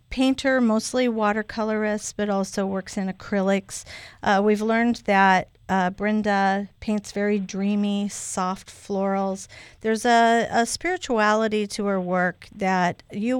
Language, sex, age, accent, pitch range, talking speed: English, female, 50-69, American, 190-220 Hz, 125 wpm